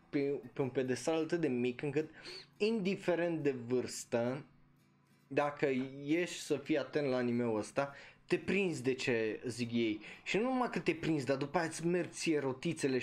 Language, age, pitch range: Romanian, 20-39, 125-160 Hz